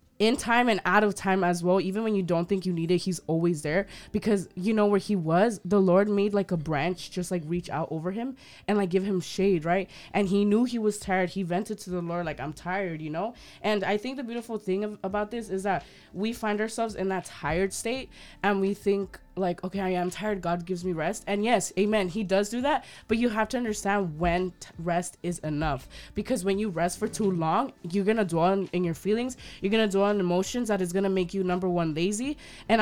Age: 20-39